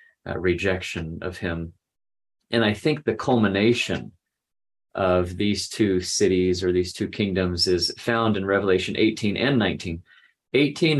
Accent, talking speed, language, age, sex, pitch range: American, 135 wpm, English, 30-49, male, 90-115 Hz